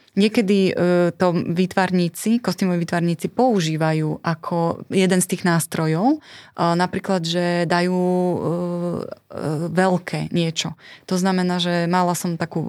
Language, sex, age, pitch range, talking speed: Slovak, female, 20-39, 165-185 Hz, 120 wpm